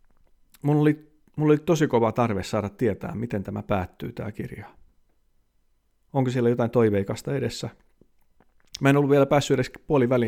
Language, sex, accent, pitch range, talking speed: Finnish, male, native, 100-120 Hz, 145 wpm